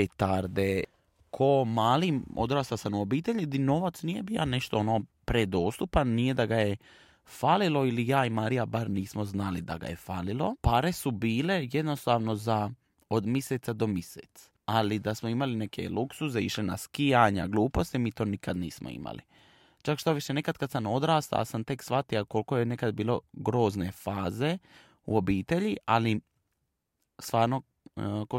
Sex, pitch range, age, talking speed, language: male, 105-135 Hz, 20-39, 160 wpm, Croatian